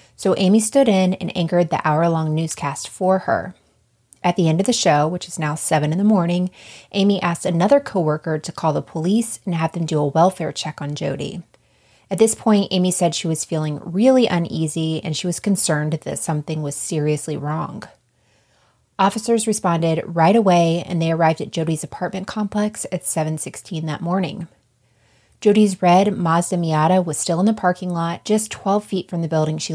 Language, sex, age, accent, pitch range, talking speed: English, female, 30-49, American, 155-190 Hz, 185 wpm